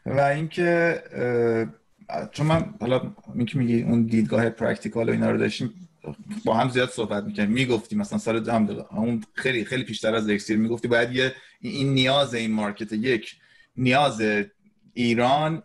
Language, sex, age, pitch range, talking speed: Persian, male, 30-49, 115-150 Hz, 140 wpm